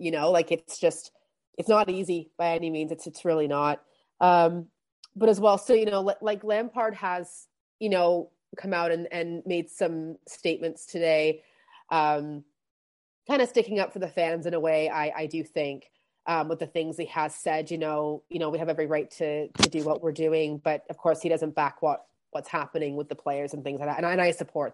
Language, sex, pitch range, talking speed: English, female, 150-175 Hz, 225 wpm